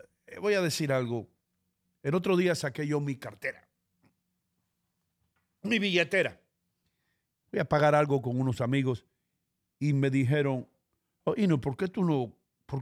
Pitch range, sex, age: 125-165 Hz, male, 50-69